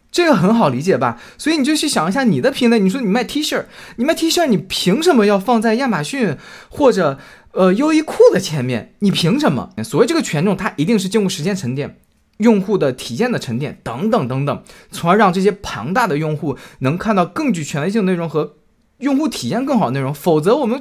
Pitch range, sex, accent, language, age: 180-250 Hz, male, native, Chinese, 20-39